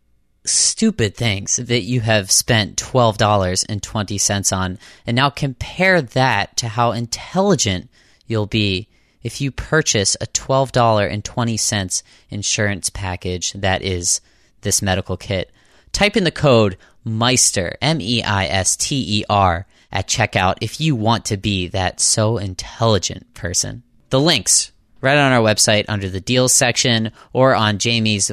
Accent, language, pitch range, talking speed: American, English, 100-125 Hz, 125 wpm